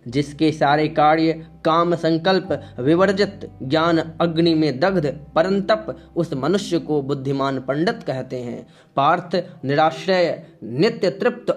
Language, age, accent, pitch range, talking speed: Hindi, 20-39, native, 155-190 Hz, 115 wpm